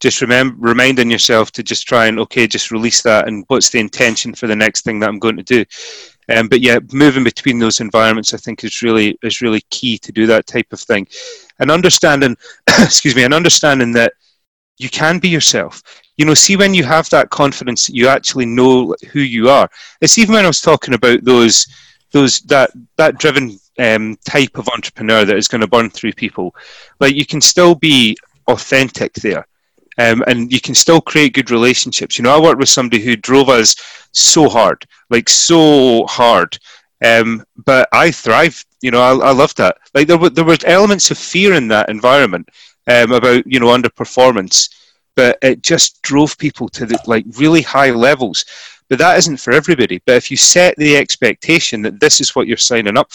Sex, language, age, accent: male, English, 30-49, British